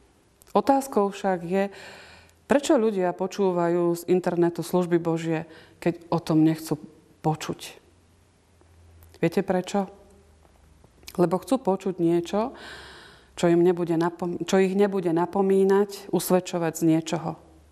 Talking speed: 110 wpm